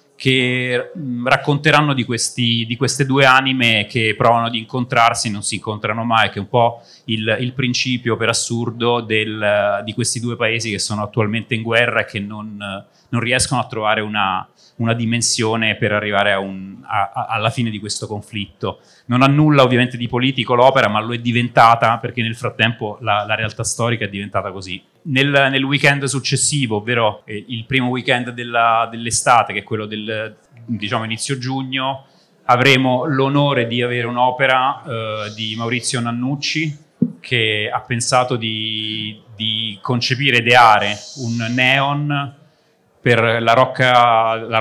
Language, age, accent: Italian, 30-49, native